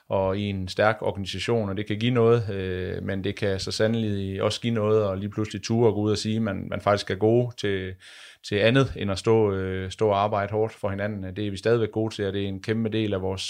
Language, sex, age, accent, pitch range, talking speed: Danish, male, 30-49, native, 95-110 Hz, 270 wpm